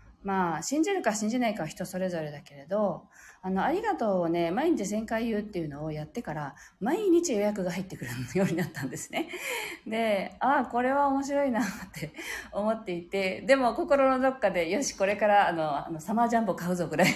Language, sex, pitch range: Japanese, female, 170-260 Hz